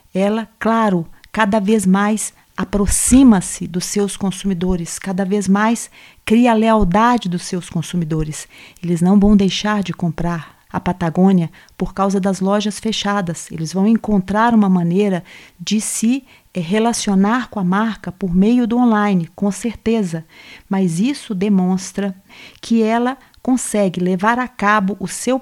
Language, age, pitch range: Portuguese, 40-59, 185-220 Hz